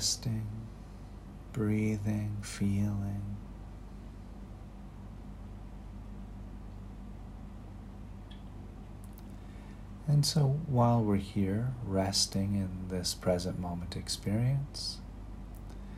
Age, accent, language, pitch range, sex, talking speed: 40-59, American, English, 100-110 Hz, male, 55 wpm